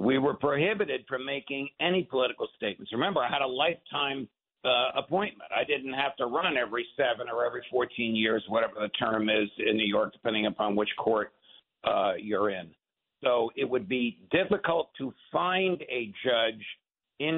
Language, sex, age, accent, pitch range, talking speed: English, male, 60-79, American, 120-155 Hz, 175 wpm